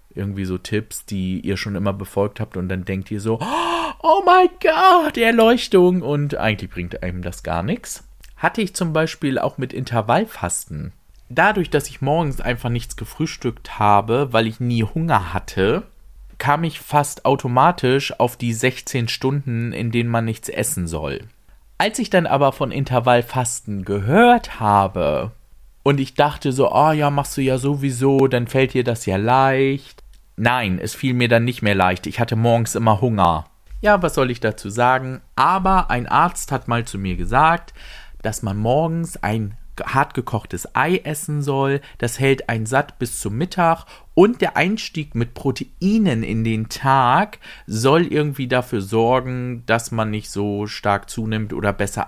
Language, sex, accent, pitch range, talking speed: German, male, German, 110-145 Hz, 170 wpm